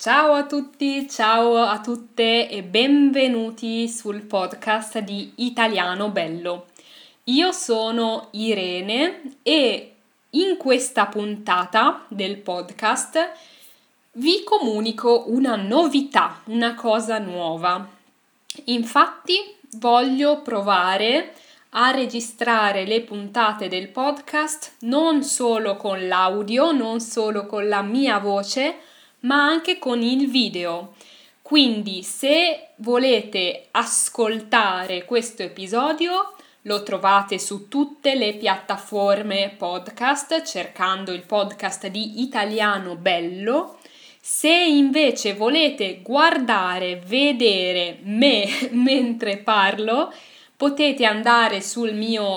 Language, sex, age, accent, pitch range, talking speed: Italian, female, 10-29, native, 200-275 Hz, 95 wpm